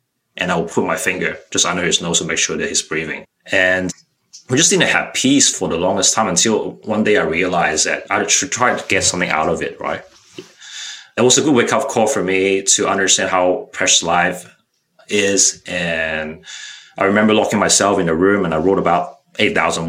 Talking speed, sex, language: 210 wpm, male, English